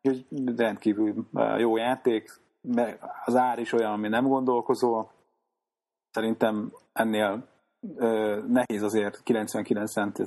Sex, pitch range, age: male, 105-120 Hz, 30-49